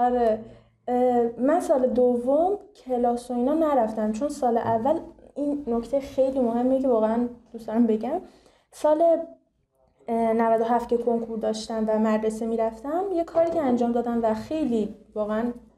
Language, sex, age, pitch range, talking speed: Persian, female, 10-29, 225-280 Hz, 135 wpm